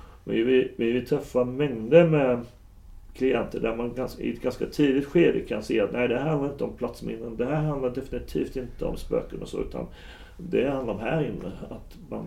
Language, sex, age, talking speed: Swedish, male, 40-59, 210 wpm